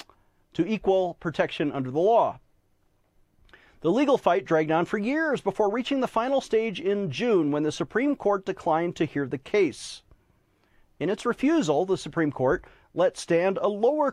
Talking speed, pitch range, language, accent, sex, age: 165 wpm, 145-215 Hz, English, American, male, 40-59